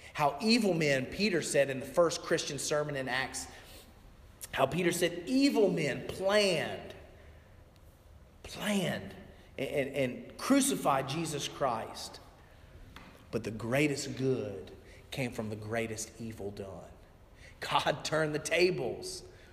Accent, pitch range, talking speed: American, 100-155 Hz, 120 wpm